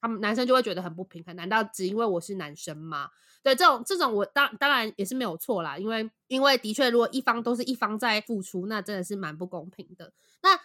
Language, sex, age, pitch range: Chinese, female, 20-39, 185-255 Hz